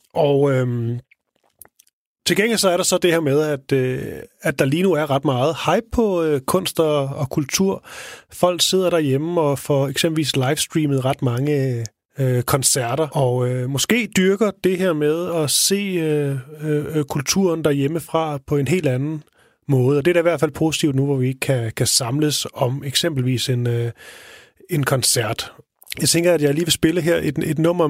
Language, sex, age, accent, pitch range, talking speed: Danish, male, 30-49, native, 130-160 Hz, 185 wpm